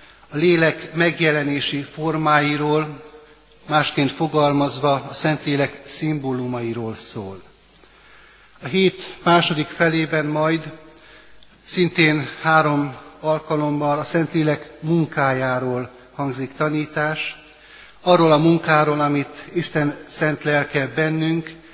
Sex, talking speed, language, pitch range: male, 85 wpm, Hungarian, 140-160 Hz